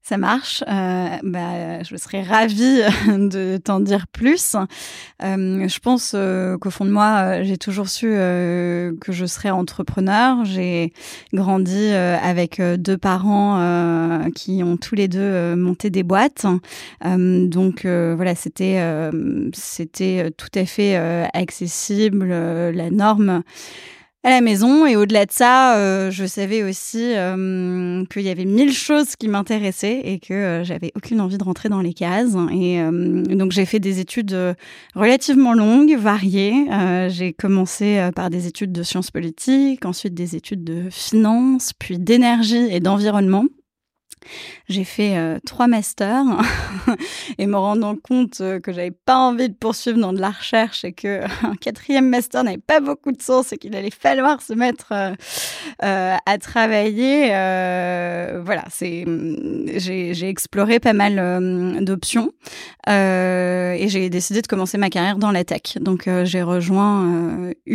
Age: 20-39